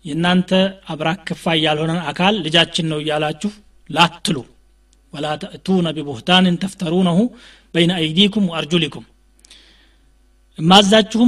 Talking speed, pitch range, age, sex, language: 85 wpm, 155-195 Hz, 30-49, male, Amharic